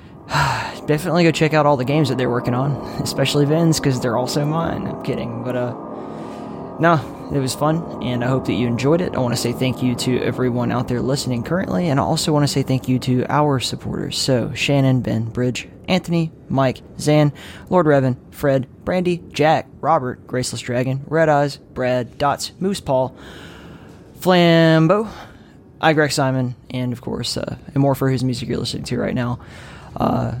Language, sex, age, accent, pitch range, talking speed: English, male, 20-39, American, 125-150 Hz, 185 wpm